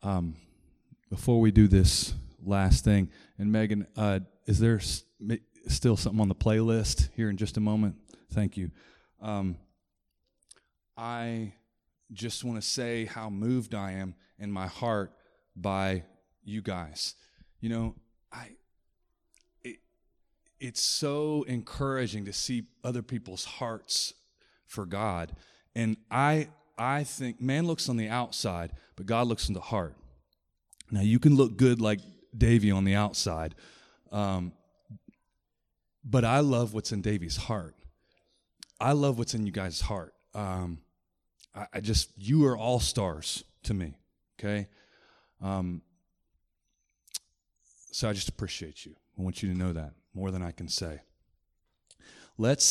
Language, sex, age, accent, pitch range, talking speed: English, male, 30-49, American, 90-115 Hz, 140 wpm